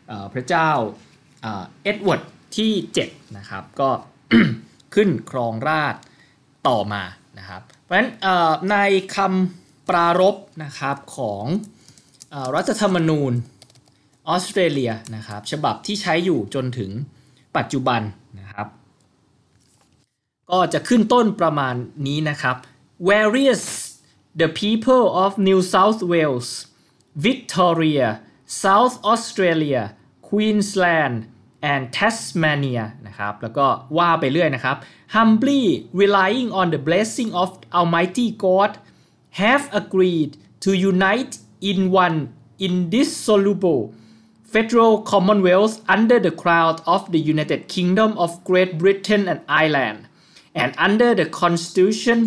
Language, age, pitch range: Thai, 20-39, 135-200 Hz